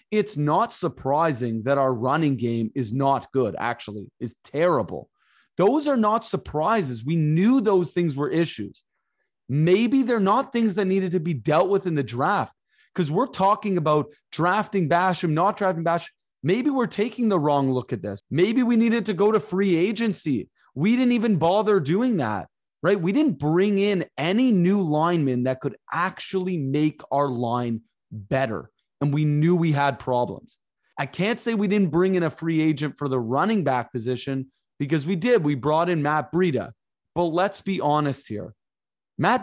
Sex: male